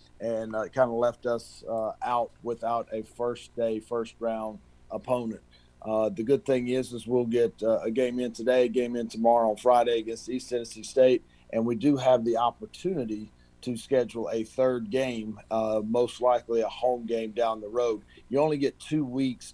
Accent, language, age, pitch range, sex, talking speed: American, English, 40-59, 110-125 Hz, male, 195 wpm